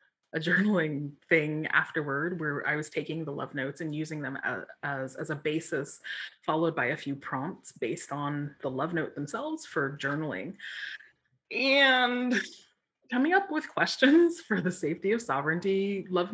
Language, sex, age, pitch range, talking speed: English, female, 20-39, 155-245 Hz, 160 wpm